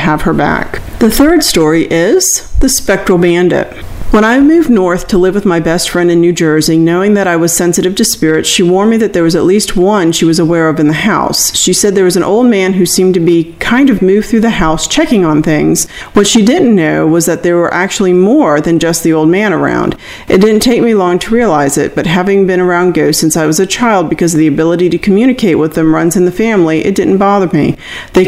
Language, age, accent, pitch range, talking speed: English, 40-59, American, 165-210 Hz, 250 wpm